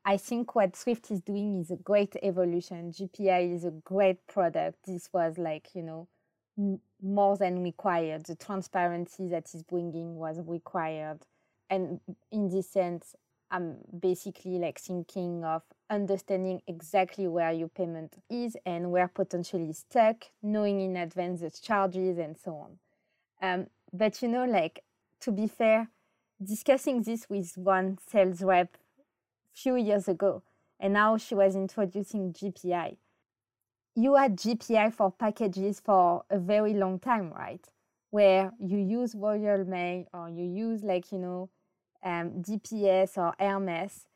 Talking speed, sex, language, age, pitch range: 145 wpm, female, English, 20-39, 175-205 Hz